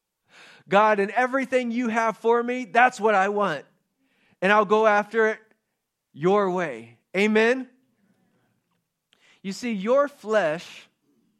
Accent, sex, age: American, male, 30-49